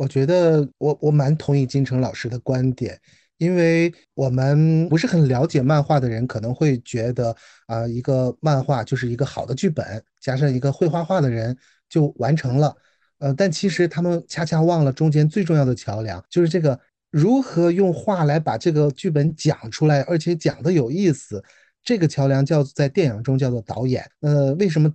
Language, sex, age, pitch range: Chinese, male, 30-49, 120-155 Hz